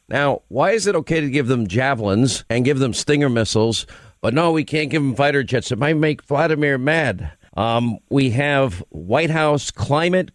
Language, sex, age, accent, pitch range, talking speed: English, male, 50-69, American, 110-140 Hz, 190 wpm